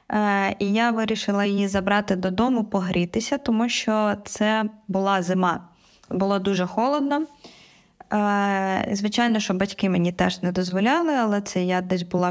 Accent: native